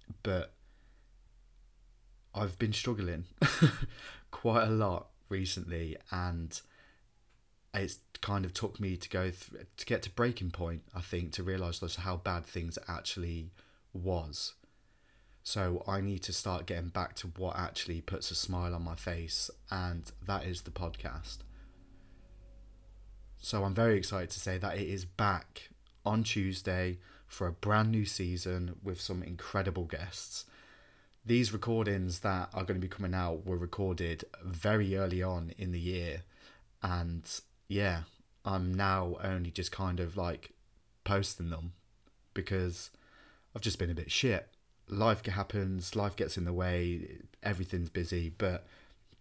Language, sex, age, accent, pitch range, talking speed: English, male, 20-39, British, 90-100 Hz, 145 wpm